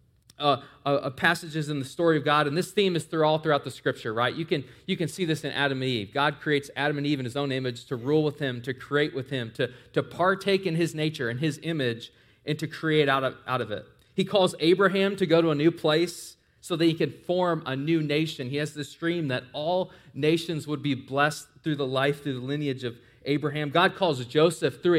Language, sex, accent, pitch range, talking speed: English, male, American, 130-160 Hz, 245 wpm